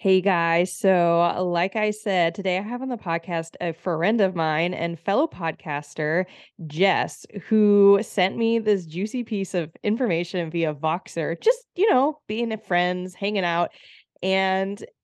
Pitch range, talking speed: 165-210 Hz, 150 wpm